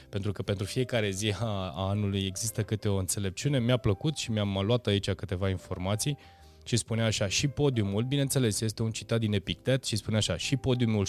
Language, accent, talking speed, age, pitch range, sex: Romanian, native, 190 wpm, 20-39, 95-125 Hz, male